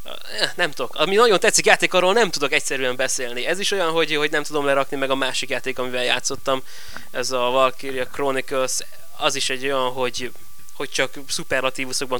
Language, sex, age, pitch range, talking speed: Hungarian, male, 20-39, 125-140 Hz, 175 wpm